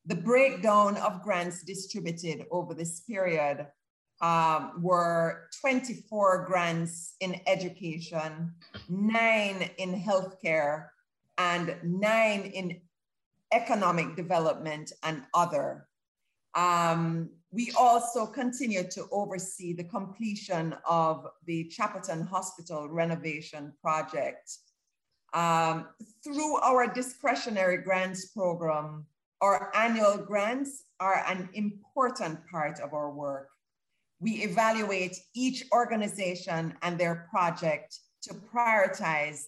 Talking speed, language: 95 wpm, English